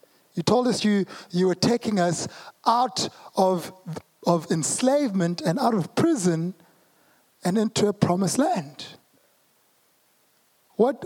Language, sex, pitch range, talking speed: English, male, 145-175 Hz, 120 wpm